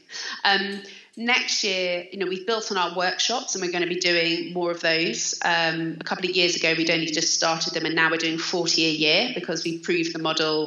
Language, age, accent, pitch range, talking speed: English, 30-49, British, 165-185 Hz, 235 wpm